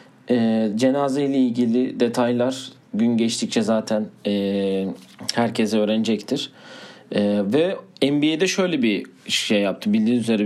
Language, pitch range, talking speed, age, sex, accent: Turkish, 110-135 Hz, 115 wpm, 40-59, male, native